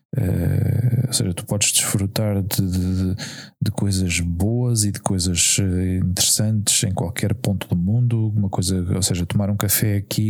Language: Portuguese